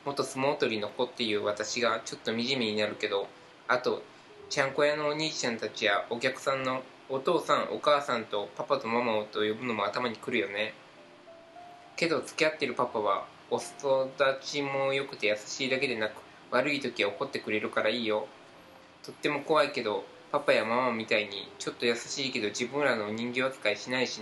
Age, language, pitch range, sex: 20-39, Japanese, 115-145 Hz, male